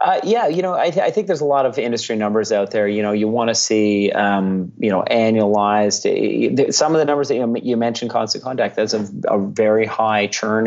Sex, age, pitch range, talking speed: male, 30-49, 105-125 Hz, 230 wpm